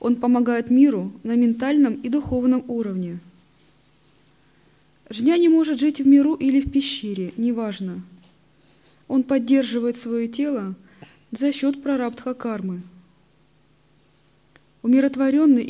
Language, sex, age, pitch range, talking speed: Russian, female, 20-39, 185-270 Hz, 100 wpm